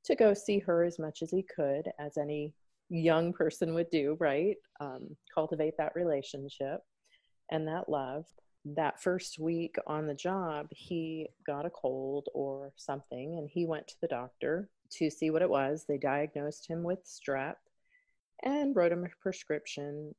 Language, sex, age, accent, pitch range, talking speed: English, female, 30-49, American, 140-170 Hz, 165 wpm